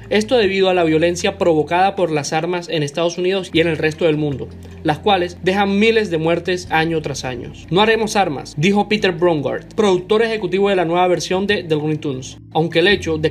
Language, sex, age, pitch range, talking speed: Spanish, male, 20-39, 155-190 Hz, 210 wpm